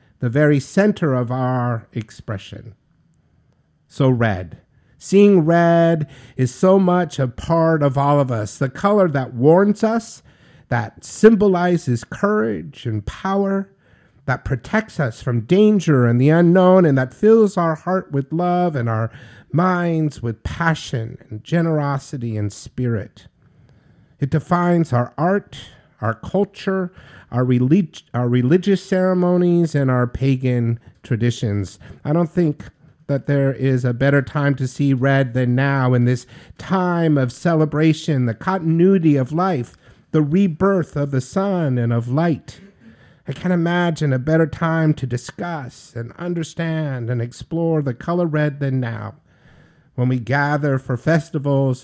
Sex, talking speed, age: male, 140 wpm, 50-69